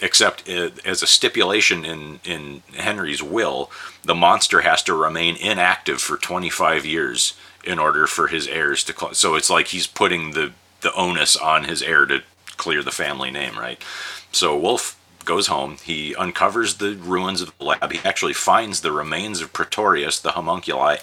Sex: male